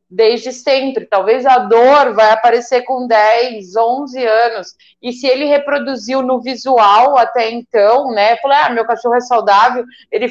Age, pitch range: 20-39, 230-300 Hz